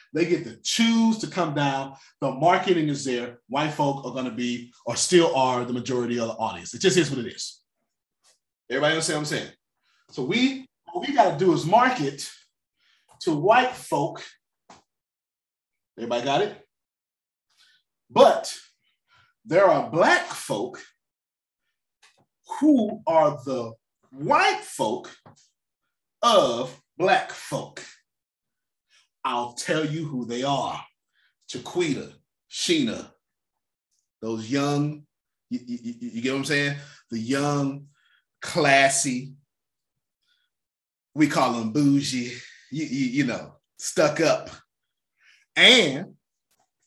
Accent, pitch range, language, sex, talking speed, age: American, 120-175 Hz, English, male, 120 wpm, 30-49